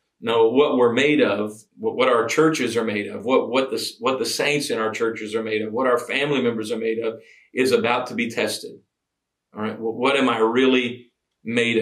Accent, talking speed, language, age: American, 220 wpm, English, 40-59